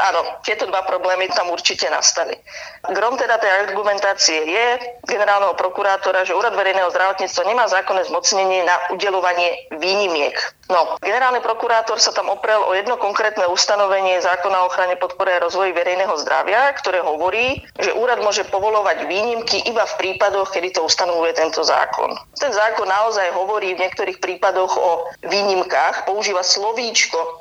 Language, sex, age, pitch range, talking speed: Slovak, female, 30-49, 180-210 Hz, 150 wpm